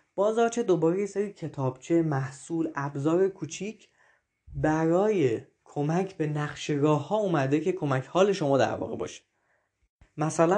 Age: 20-39